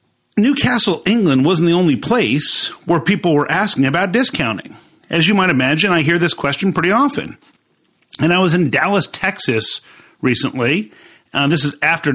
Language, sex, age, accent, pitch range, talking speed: English, male, 50-69, American, 135-205 Hz, 165 wpm